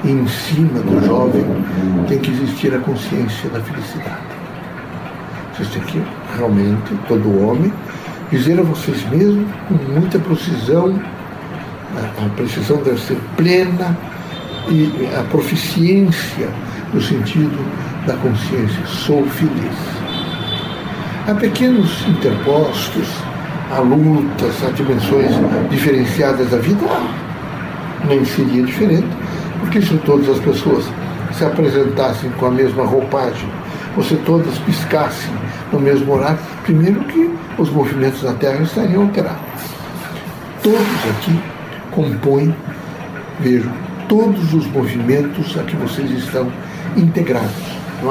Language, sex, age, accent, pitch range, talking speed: Portuguese, male, 60-79, Brazilian, 130-170 Hz, 110 wpm